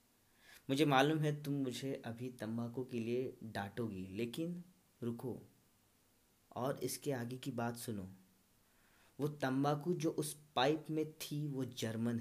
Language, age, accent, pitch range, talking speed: Hindi, 20-39, native, 110-140 Hz, 135 wpm